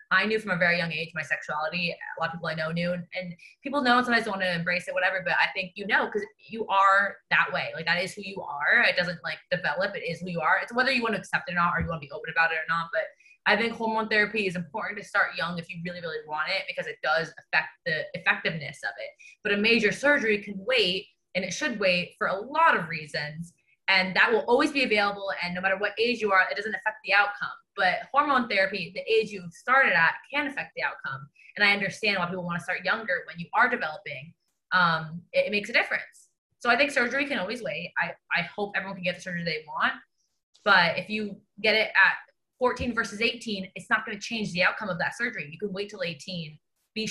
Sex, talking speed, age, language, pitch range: female, 255 wpm, 20-39, English, 175-220 Hz